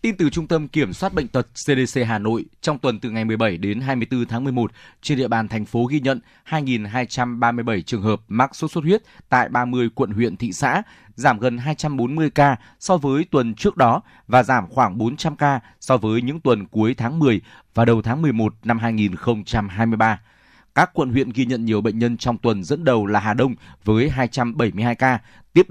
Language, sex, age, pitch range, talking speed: Vietnamese, male, 20-39, 115-145 Hz, 200 wpm